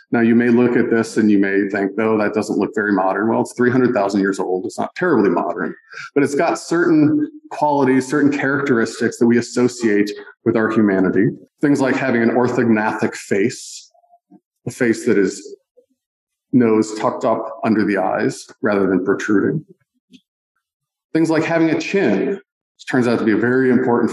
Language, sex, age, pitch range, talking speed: English, male, 40-59, 110-165 Hz, 175 wpm